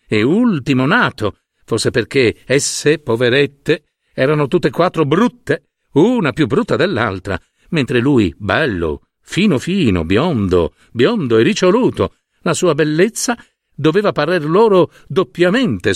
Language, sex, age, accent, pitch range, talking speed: Italian, male, 50-69, native, 125-170 Hz, 120 wpm